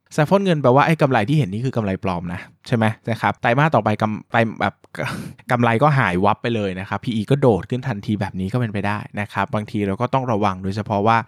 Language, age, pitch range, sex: Thai, 20-39, 100-125 Hz, male